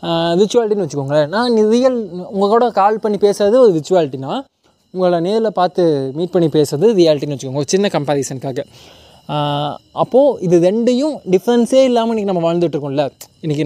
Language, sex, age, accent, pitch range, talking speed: Tamil, male, 20-39, native, 150-195 Hz, 135 wpm